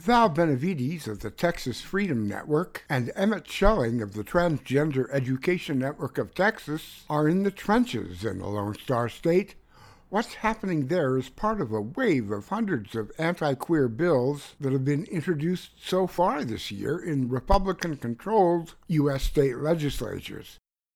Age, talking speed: 60-79, 150 wpm